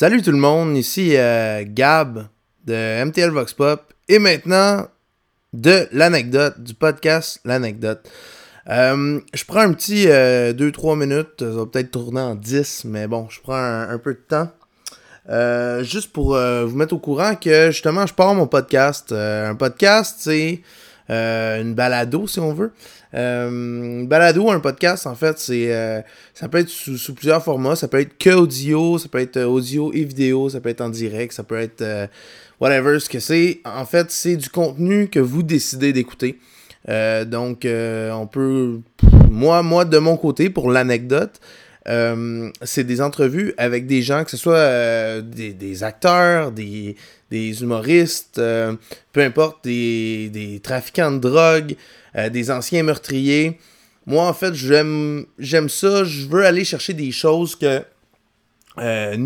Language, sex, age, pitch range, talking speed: French, male, 20-39, 115-160 Hz, 170 wpm